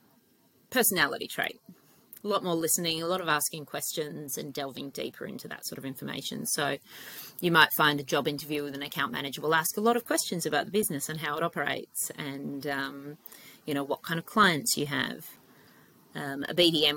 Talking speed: 200 wpm